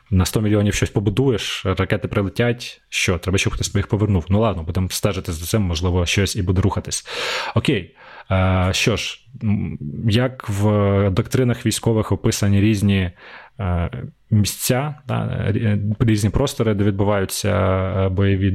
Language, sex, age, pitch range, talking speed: Ukrainian, male, 20-39, 95-110 Hz, 125 wpm